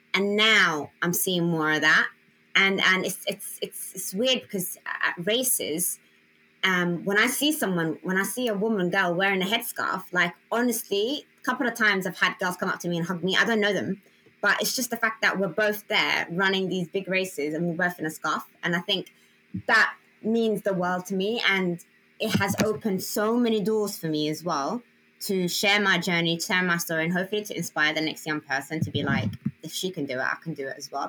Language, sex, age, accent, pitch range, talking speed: English, female, 20-39, British, 155-205 Hz, 230 wpm